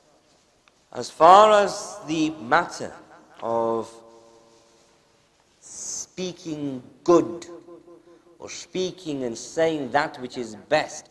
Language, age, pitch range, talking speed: English, 50-69, 115-145 Hz, 85 wpm